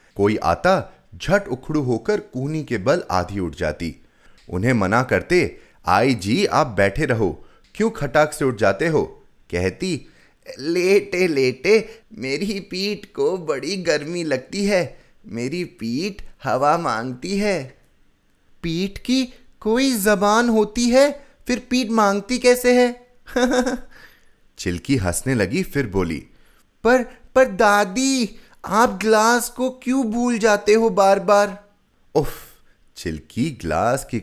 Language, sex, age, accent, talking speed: Hindi, male, 30-49, native, 125 wpm